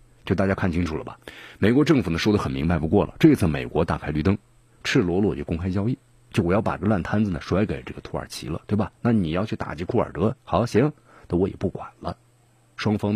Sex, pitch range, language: male, 90-120 Hz, Chinese